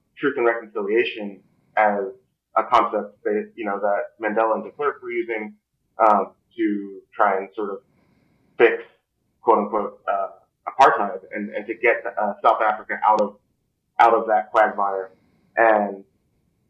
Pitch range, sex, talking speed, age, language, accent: 105-125 Hz, male, 145 wpm, 30-49, English, American